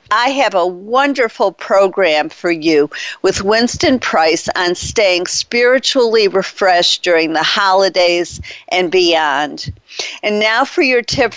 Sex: female